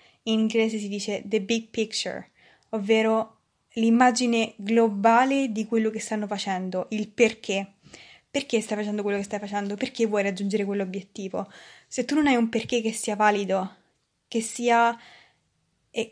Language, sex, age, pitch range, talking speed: Italian, female, 20-39, 200-230 Hz, 150 wpm